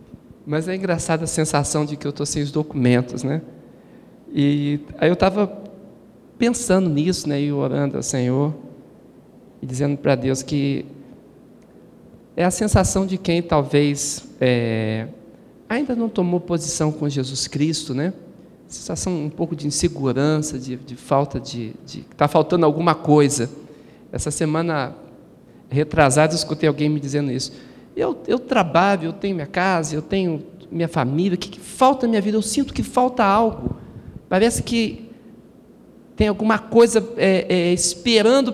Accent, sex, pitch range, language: Brazilian, male, 140-185 Hz, Portuguese